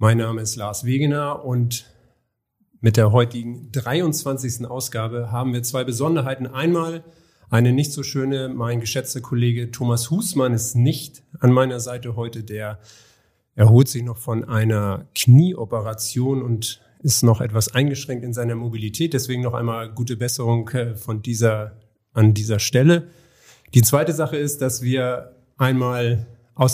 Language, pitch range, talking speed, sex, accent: German, 115-135 Hz, 140 wpm, male, German